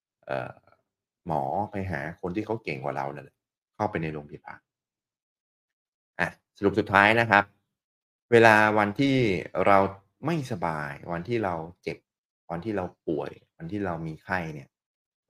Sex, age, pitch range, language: male, 30-49, 85-105 Hz, Thai